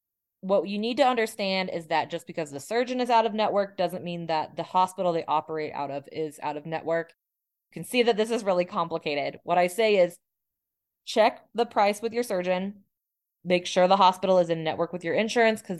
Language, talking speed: English, 215 wpm